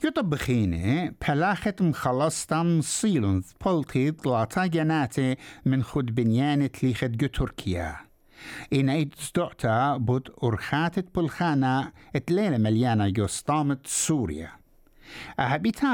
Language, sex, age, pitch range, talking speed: English, male, 60-79, 105-150 Hz, 100 wpm